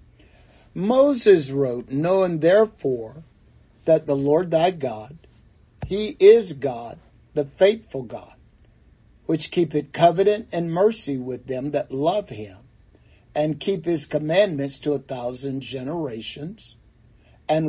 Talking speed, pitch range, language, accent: 115 wpm, 115-170 Hz, English, American